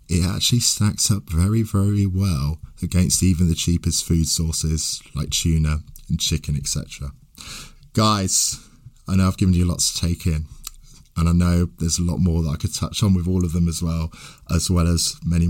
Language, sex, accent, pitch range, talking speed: English, male, British, 85-120 Hz, 195 wpm